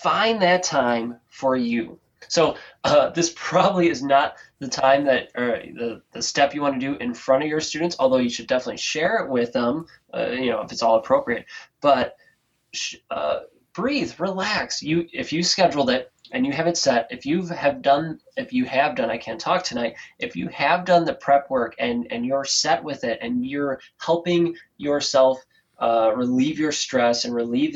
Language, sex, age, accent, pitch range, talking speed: English, male, 20-39, American, 125-180 Hz, 200 wpm